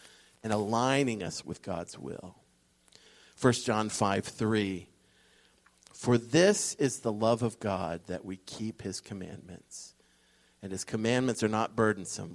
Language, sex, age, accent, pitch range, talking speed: English, male, 50-69, American, 85-125 Hz, 135 wpm